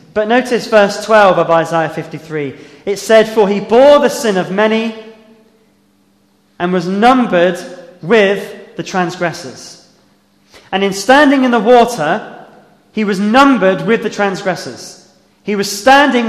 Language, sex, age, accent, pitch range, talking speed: English, male, 20-39, British, 150-215 Hz, 135 wpm